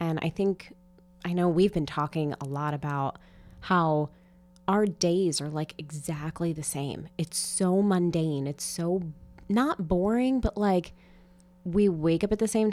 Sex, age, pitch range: female, 20-39, 160-200 Hz